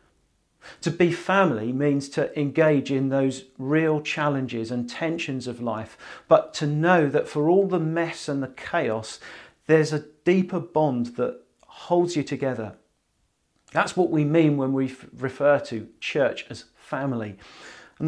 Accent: British